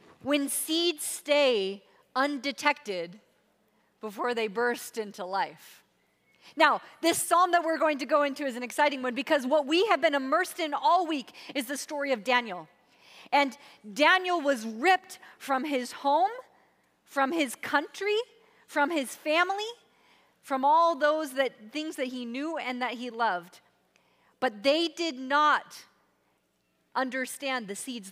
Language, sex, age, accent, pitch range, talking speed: English, female, 40-59, American, 215-300 Hz, 145 wpm